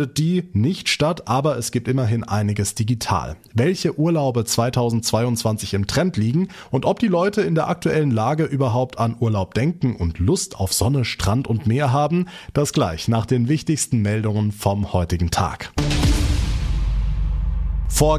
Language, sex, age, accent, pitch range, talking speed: German, male, 30-49, German, 105-145 Hz, 150 wpm